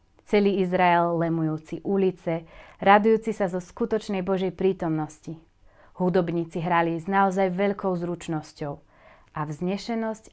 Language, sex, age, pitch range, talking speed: Slovak, female, 30-49, 155-195 Hz, 105 wpm